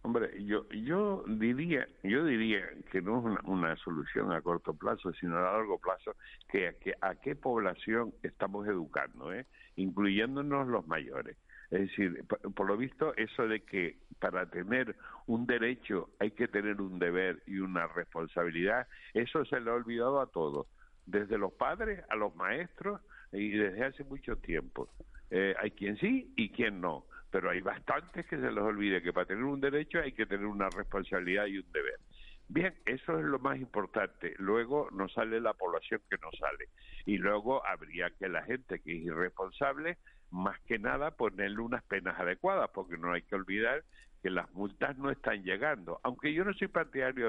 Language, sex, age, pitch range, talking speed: Spanish, male, 60-79, 95-140 Hz, 180 wpm